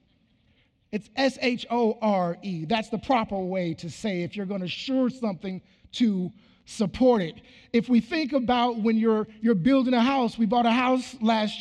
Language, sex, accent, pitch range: English, male, American, 210-250 Hz